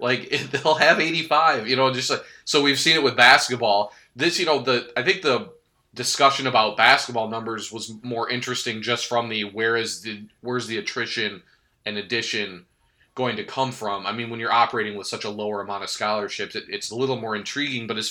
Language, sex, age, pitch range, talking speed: English, male, 20-39, 100-125 Hz, 205 wpm